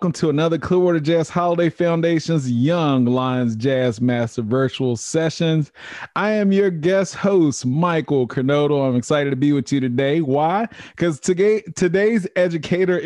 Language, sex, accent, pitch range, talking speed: English, male, American, 125-165 Hz, 145 wpm